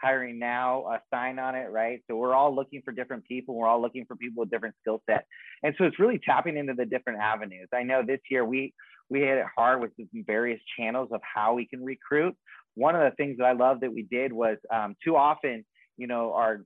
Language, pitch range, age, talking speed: English, 125-145 Hz, 30-49, 240 wpm